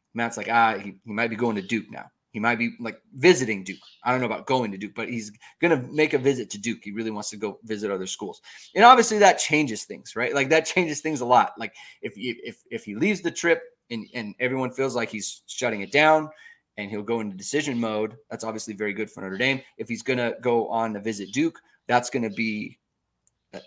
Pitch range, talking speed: 105-145 Hz, 245 wpm